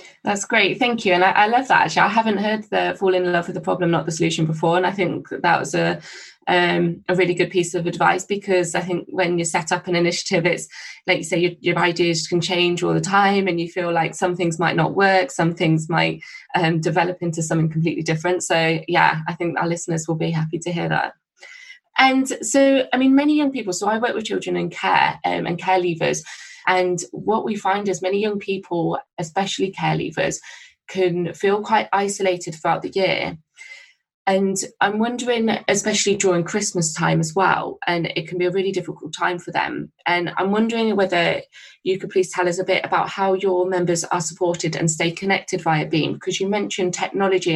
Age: 20-39